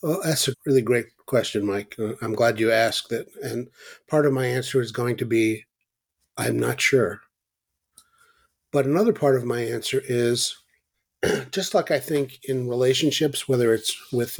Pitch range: 110-145 Hz